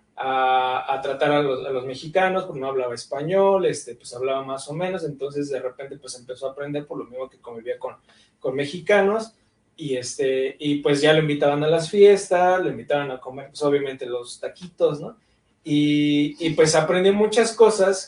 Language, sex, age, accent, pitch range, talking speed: Spanish, male, 20-39, Mexican, 135-170 Hz, 195 wpm